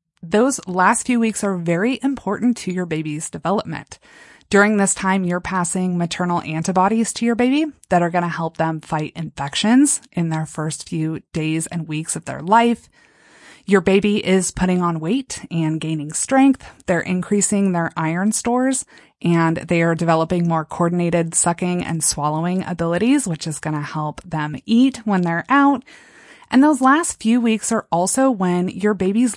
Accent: American